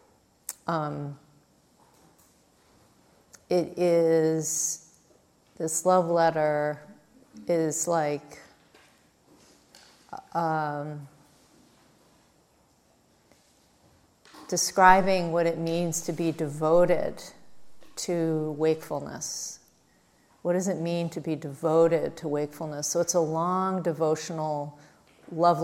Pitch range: 145-170 Hz